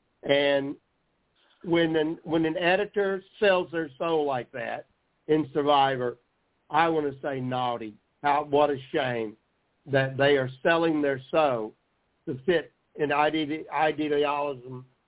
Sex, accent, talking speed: male, American, 125 wpm